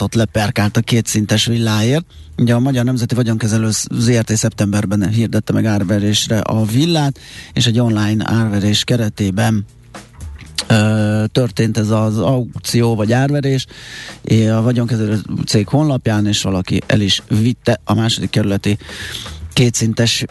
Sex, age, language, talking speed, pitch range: male, 30-49, Hungarian, 125 wpm, 105-120 Hz